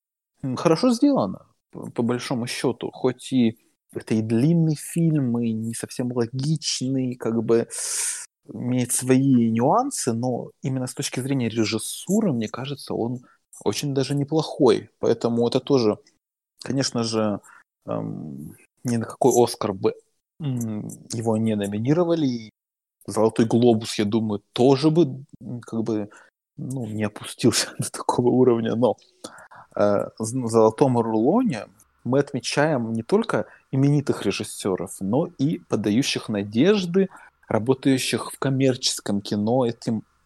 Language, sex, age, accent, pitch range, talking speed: Ukrainian, male, 20-39, native, 110-135 Hz, 115 wpm